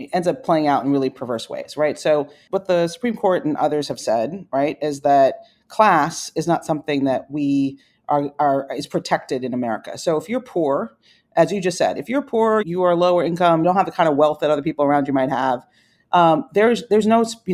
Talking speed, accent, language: 225 wpm, American, English